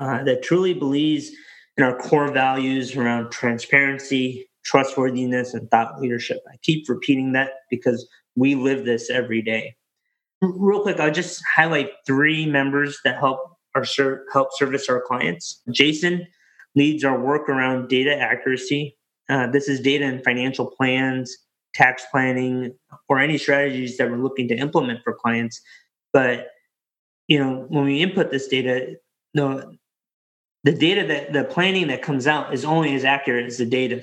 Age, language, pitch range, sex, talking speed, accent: 20-39, English, 130-150 Hz, male, 160 wpm, American